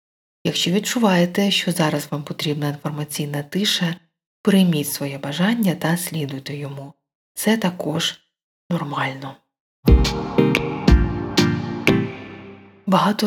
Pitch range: 150-185 Hz